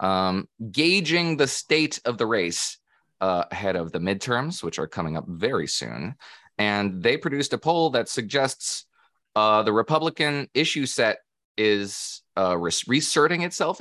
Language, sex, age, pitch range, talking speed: English, male, 30-49, 90-135 Hz, 150 wpm